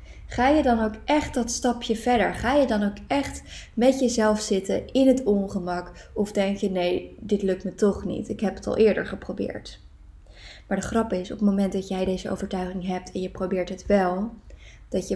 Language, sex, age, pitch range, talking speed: Dutch, female, 20-39, 185-230 Hz, 210 wpm